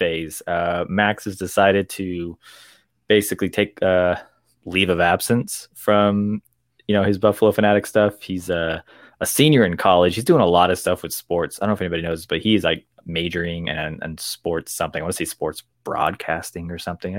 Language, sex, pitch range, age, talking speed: English, male, 85-105 Hz, 20-39, 190 wpm